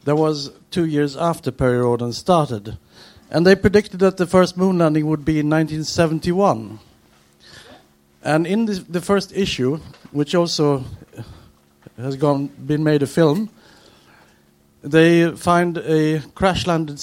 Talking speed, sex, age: 135 wpm, male, 50-69